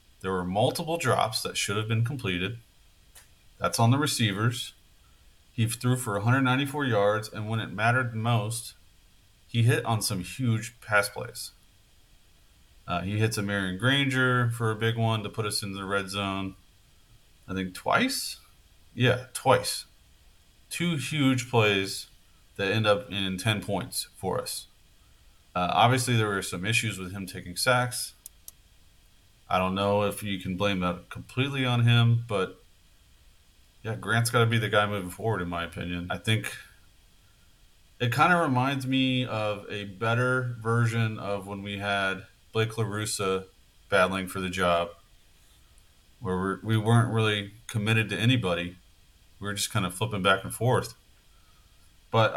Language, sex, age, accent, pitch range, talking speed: English, male, 30-49, American, 90-115 Hz, 155 wpm